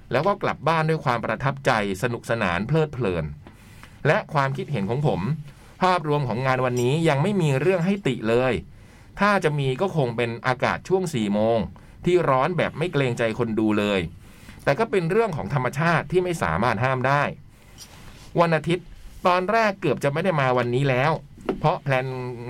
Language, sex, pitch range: Thai, male, 110-155 Hz